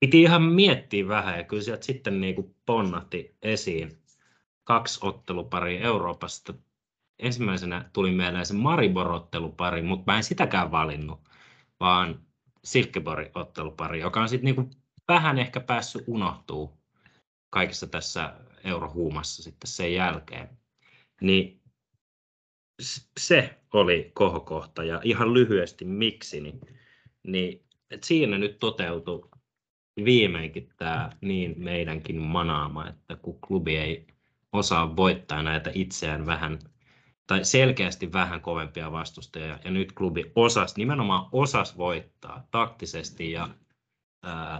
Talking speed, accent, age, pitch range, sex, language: 110 wpm, native, 30-49, 80-115 Hz, male, Finnish